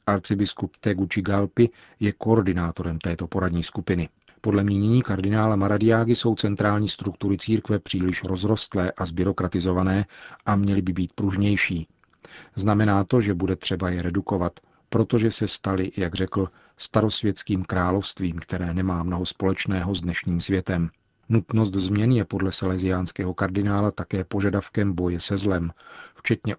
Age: 40-59